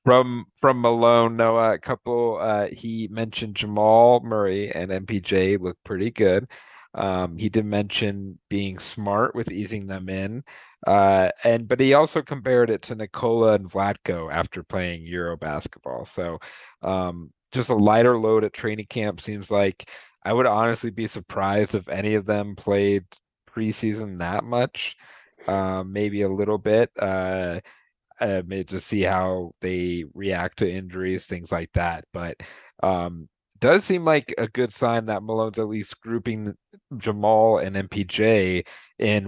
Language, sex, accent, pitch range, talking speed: English, male, American, 95-115 Hz, 150 wpm